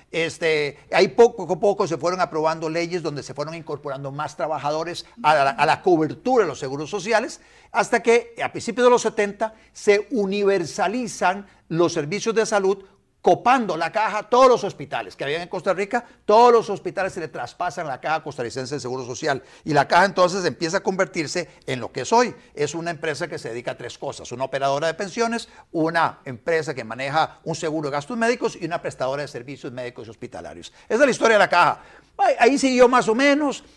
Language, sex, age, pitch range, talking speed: Spanish, male, 50-69, 155-215 Hz, 200 wpm